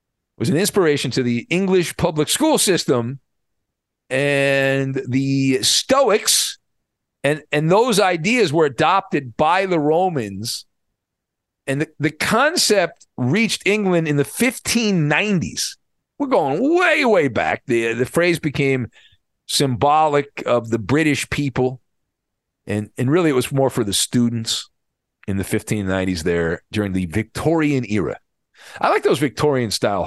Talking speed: 130 wpm